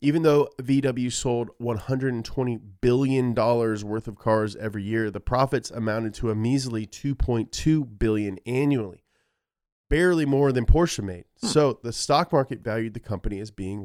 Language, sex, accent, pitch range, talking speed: English, male, American, 105-140 Hz, 145 wpm